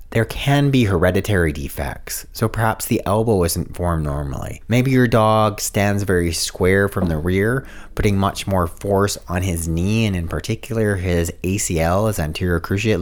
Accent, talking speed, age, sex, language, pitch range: American, 165 wpm, 30-49, male, English, 85-110 Hz